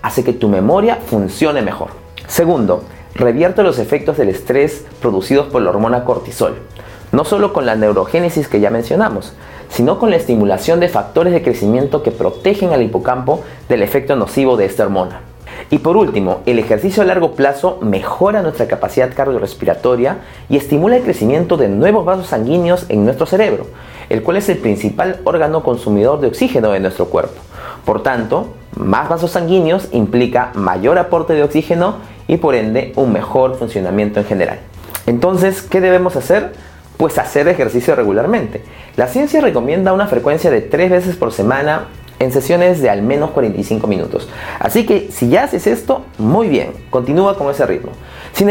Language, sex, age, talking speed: Spanish, male, 40-59, 165 wpm